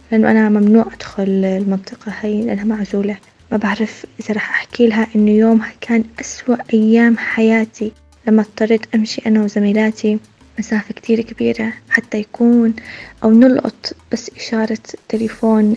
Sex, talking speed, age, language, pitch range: female, 135 wpm, 20-39, Arabic, 215-230 Hz